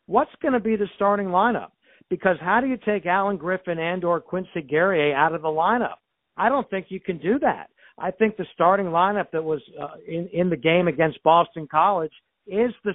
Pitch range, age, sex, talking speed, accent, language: 155-185 Hz, 60-79, male, 210 wpm, American, English